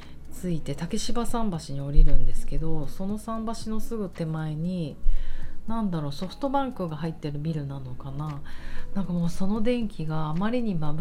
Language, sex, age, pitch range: Japanese, female, 40-59, 145-200 Hz